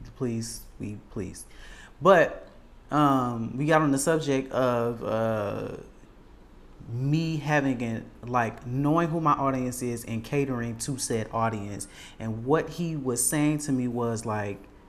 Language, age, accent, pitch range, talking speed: English, 30-49, American, 115-145 Hz, 135 wpm